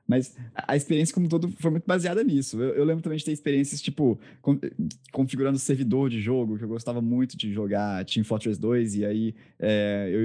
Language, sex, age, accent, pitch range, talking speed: Portuguese, male, 20-39, Brazilian, 115-140 Hz, 205 wpm